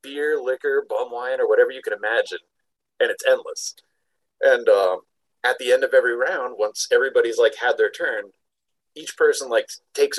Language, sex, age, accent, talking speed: English, male, 30-49, American, 175 wpm